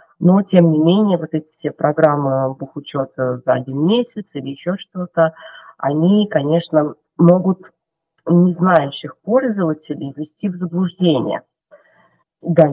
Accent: native